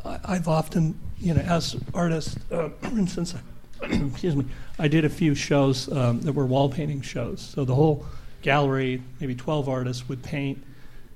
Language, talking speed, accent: English, 175 wpm, American